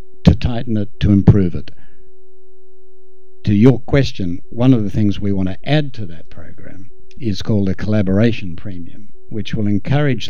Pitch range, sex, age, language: 95-120 Hz, male, 60-79, English